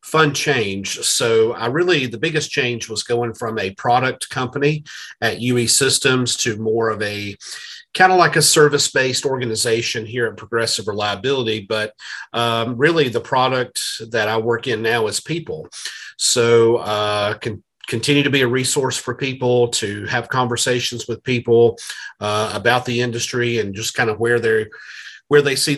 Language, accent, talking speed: English, American, 165 wpm